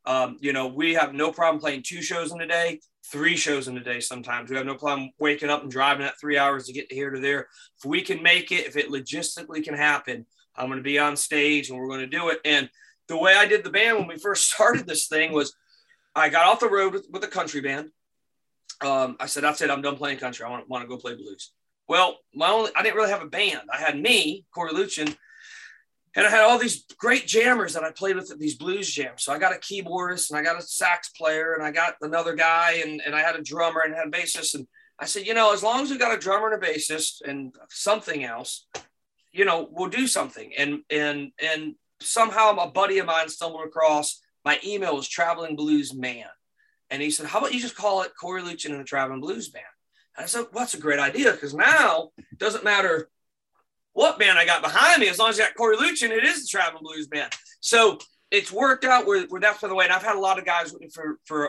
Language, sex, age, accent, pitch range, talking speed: Dutch, male, 30-49, American, 145-205 Hz, 250 wpm